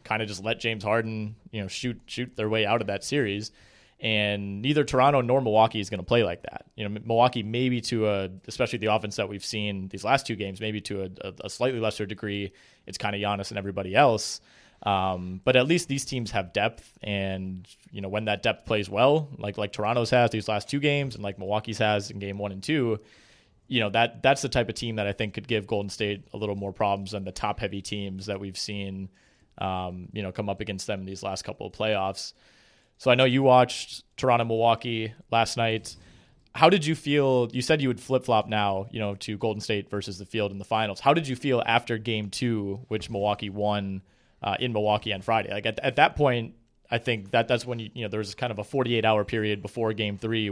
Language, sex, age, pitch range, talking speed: English, male, 20-39, 100-115 Hz, 240 wpm